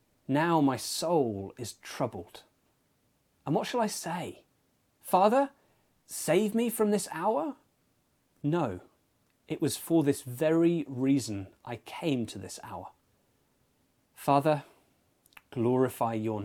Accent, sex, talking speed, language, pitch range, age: British, male, 115 wpm, English, 115-150 Hz, 30-49